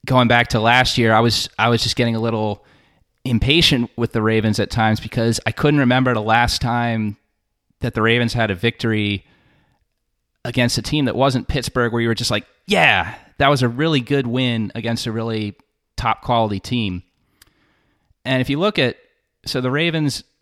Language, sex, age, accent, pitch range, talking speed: English, male, 30-49, American, 105-130 Hz, 190 wpm